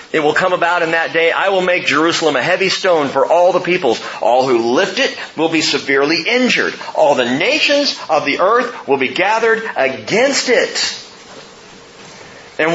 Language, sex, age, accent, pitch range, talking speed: English, male, 40-59, American, 150-220 Hz, 180 wpm